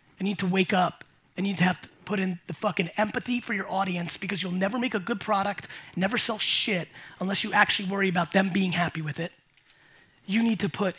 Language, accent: English, American